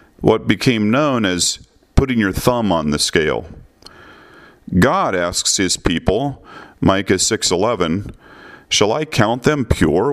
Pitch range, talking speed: 85-120 Hz, 125 wpm